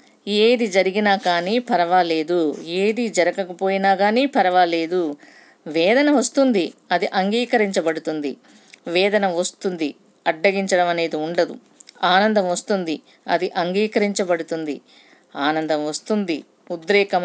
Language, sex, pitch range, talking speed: Telugu, female, 175-235 Hz, 85 wpm